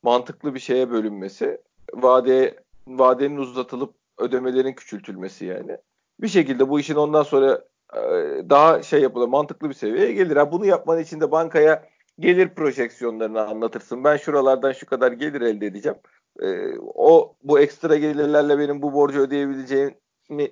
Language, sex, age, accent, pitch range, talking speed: Turkish, male, 40-59, native, 130-165 Hz, 135 wpm